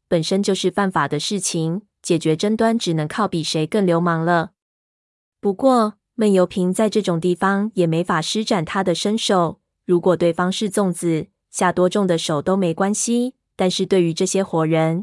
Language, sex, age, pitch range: Chinese, female, 20-39, 170-210 Hz